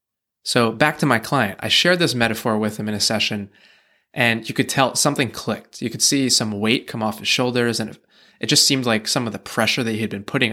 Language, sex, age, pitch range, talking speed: English, male, 20-39, 110-130 Hz, 245 wpm